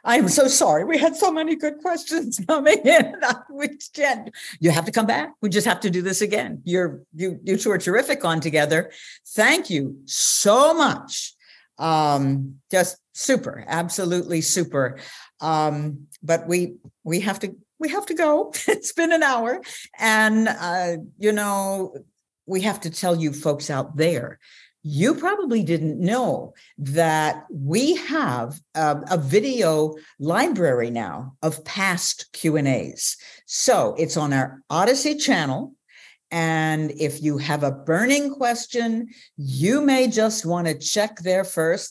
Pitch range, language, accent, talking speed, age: 150-215 Hz, English, American, 145 wpm, 60-79